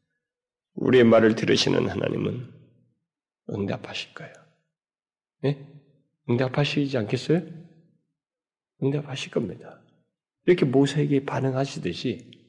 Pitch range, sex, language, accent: 110-155 Hz, male, Korean, native